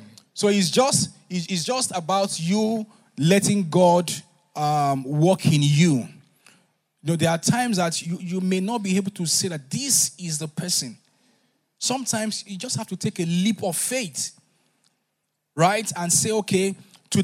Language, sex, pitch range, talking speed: English, male, 165-215 Hz, 155 wpm